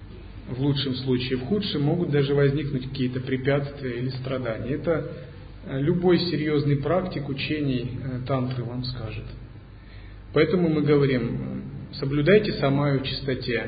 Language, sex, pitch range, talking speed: Russian, male, 115-155 Hz, 120 wpm